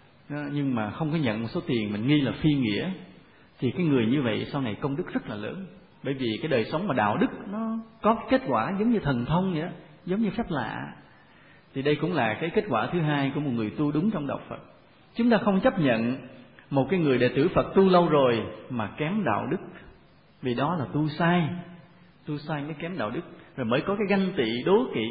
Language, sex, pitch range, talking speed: Vietnamese, male, 125-180 Hz, 240 wpm